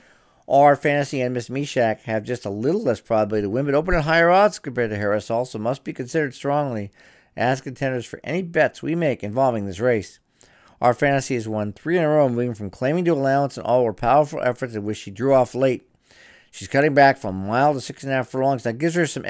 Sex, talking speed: male, 245 wpm